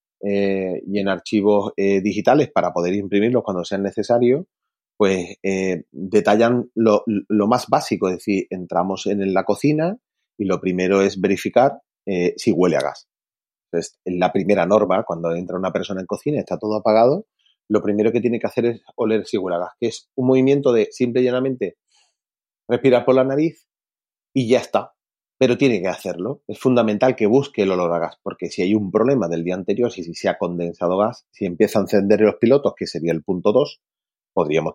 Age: 30-49